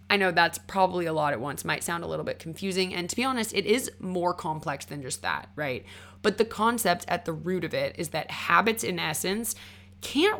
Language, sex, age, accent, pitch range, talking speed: English, female, 20-39, American, 155-215 Hz, 230 wpm